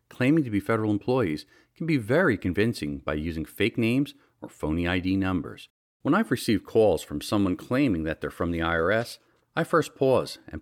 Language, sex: English, male